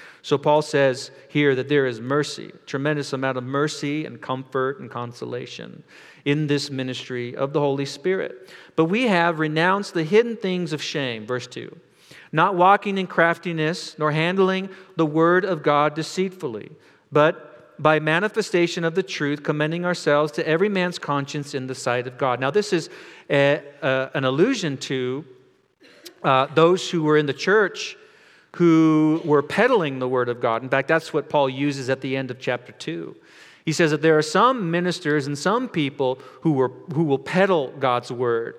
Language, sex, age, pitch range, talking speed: English, male, 40-59, 135-170 Hz, 175 wpm